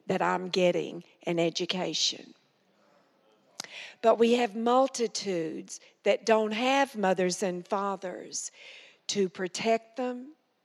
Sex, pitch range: female, 185-235 Hz